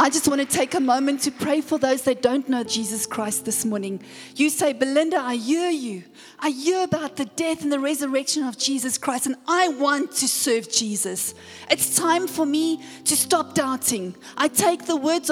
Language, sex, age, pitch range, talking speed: English, female, 40-59, 240-310 Hz, 205 wpm